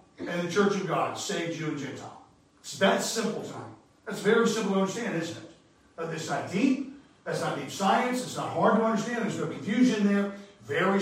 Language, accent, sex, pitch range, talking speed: English, American, male, 155-210 Hz, 195 wpm